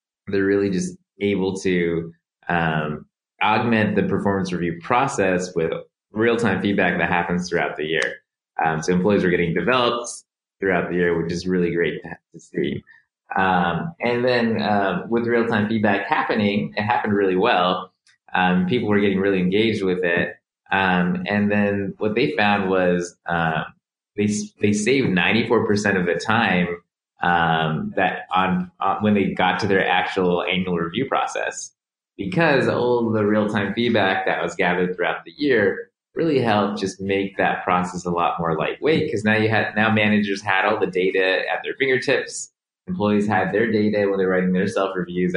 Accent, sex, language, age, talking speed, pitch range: American, male, English, 20-39, 170 wpm, 90-105 Hz